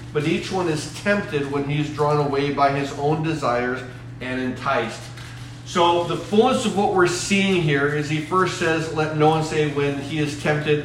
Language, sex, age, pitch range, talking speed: English, male, 40-59, 135-160 Hz, 200 wpm